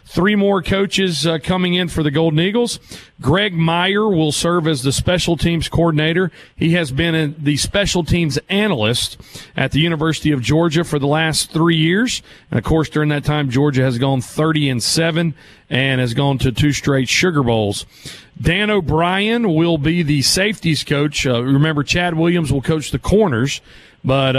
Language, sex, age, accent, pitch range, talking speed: English, male, 40-59, American, 140-170 Hz, 175 wpm